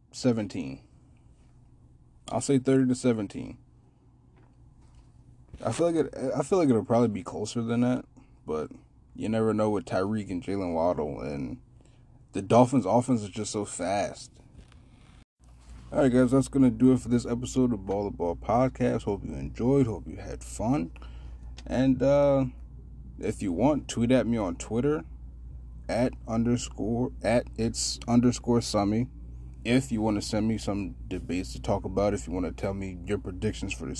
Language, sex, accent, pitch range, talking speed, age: English, male, American, 85-125 Hz, 165 wpm, 20-39